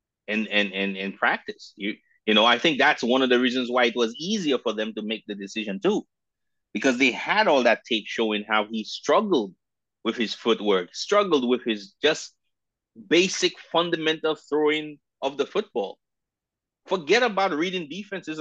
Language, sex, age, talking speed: English, male, 30-49, 175 wpm